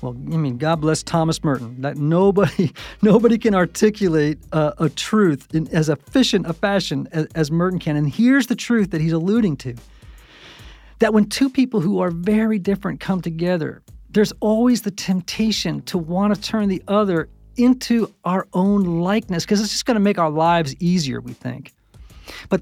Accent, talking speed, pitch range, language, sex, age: American, 180 wpm, 155-205 Hz, English, male, 40-59